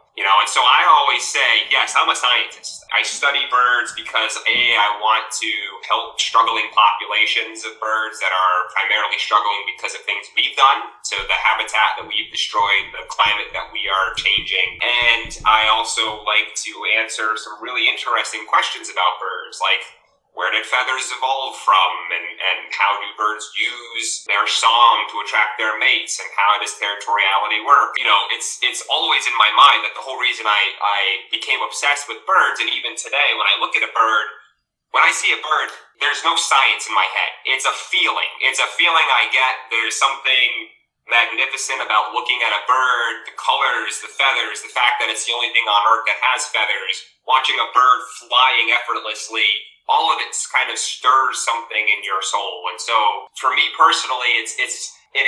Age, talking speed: 30-49, 190 wpm